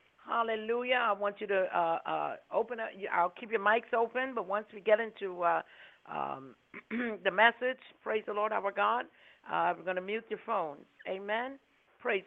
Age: 60-79